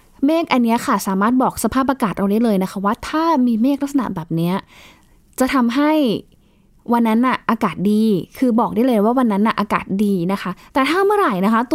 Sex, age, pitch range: female, 20-39, 205-270 Hz